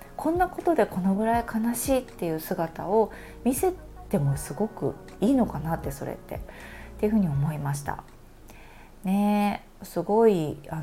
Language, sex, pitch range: Japanese, female, 155-225 Hz